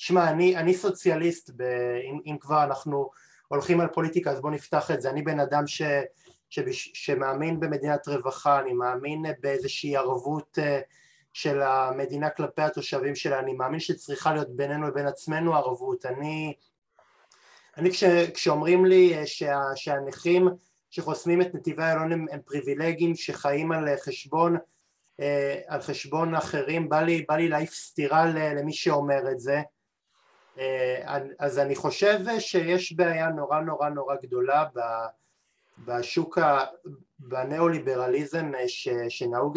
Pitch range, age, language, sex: 140-175 Hz, 20-39, Hebrew, male